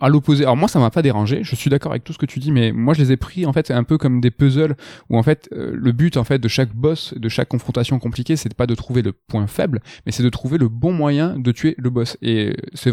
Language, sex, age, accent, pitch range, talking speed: French, male, 20-39, French, 110-140 Hz, 295 wpm